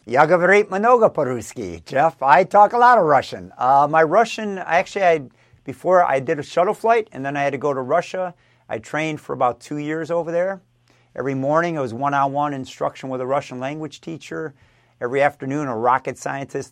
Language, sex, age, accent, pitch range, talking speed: English, male, 50-69, American, 120-150 Hz, 180 wpm